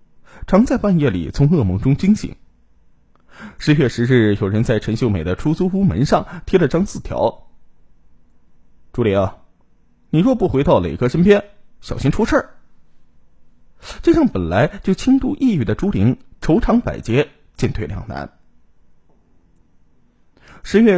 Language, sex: Chinese, male